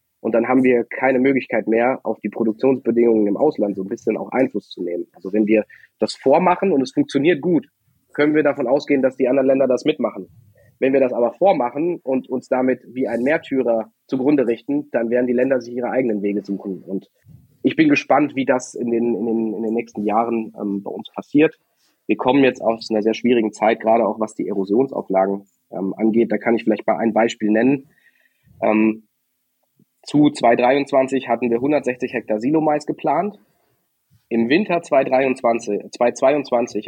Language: German